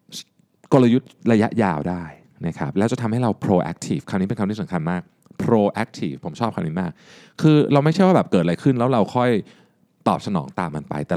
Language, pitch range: Thai, 100-160 Hz